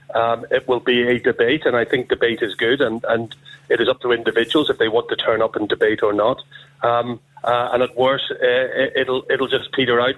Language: English